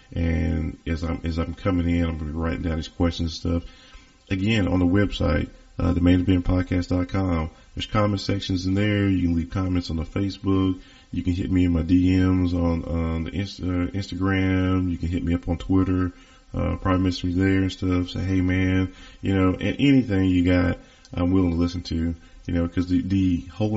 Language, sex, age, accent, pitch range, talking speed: English, male, 30-49, American, 85-95 Hz, 210 wpm